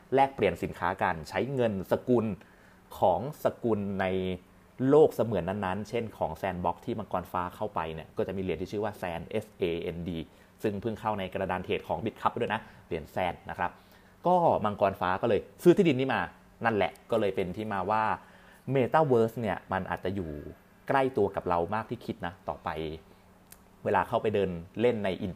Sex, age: male, 30-49